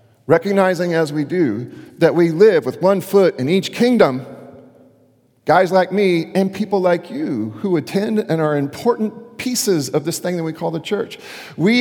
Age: 40-59